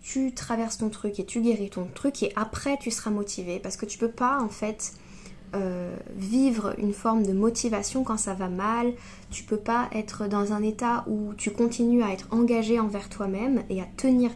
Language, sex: French, female